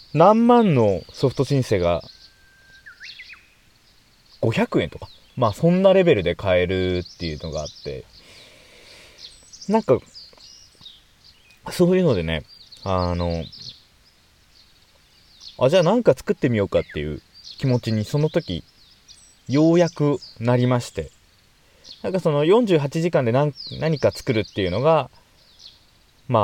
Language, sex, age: Japanese, male, 20-39